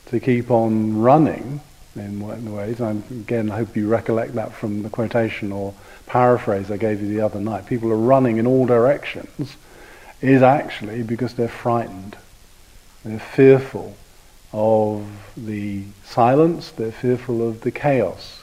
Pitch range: 105-125 Hz